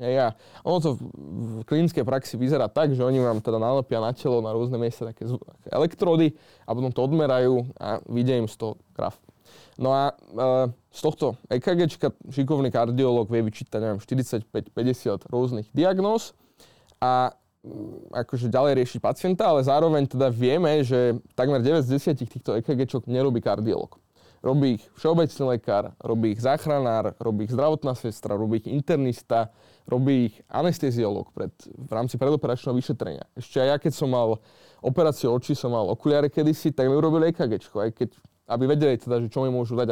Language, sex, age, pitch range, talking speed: Slovak, male, 20-39, 120-145 Hz, 165 wpm